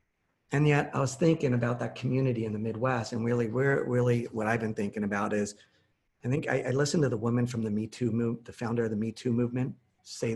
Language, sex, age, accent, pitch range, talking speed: English, male, 40-59, American, 110-130 Hz, 245 wpm